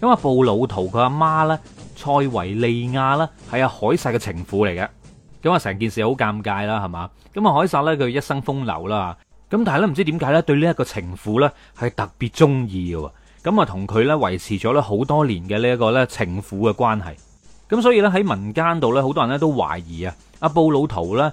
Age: 30-49